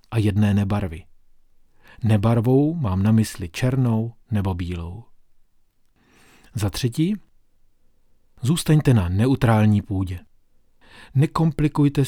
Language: Czech